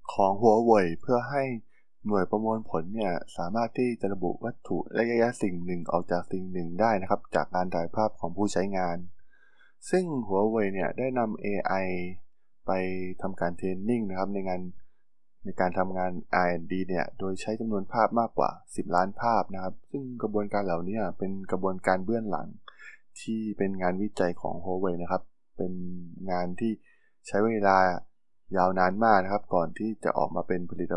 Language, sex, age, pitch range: Thai, male, 20-39, 90-115 Hz